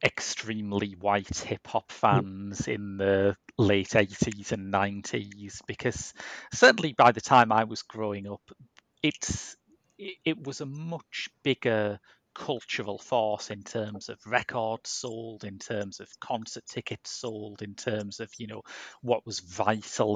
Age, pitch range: 30-49, 100-120 Hz